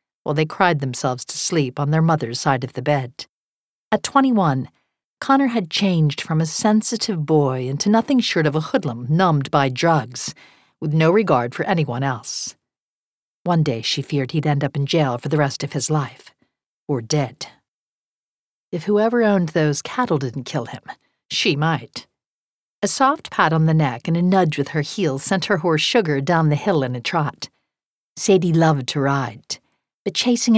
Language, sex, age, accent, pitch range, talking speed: English, female, 50-69, American, 140-185 Hz, 180 wpm